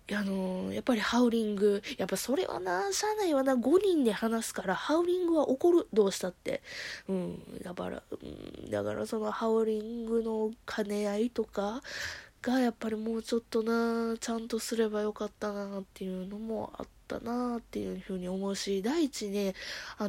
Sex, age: female, 20-39